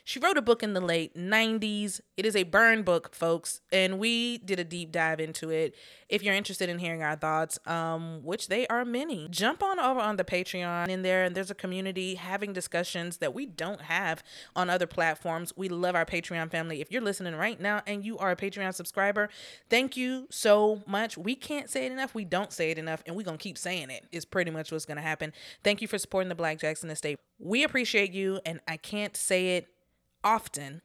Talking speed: 220 wpm